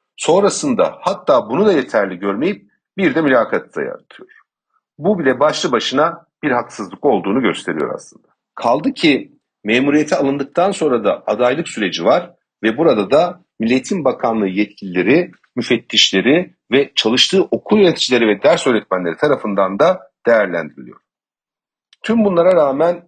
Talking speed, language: 125 wpm, Turkish